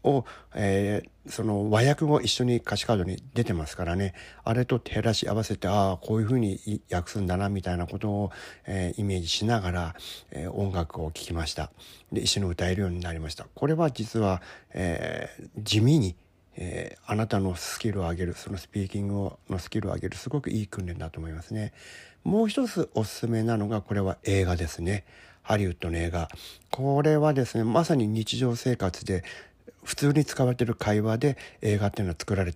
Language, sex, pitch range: Japanese, male, 90-120 Hz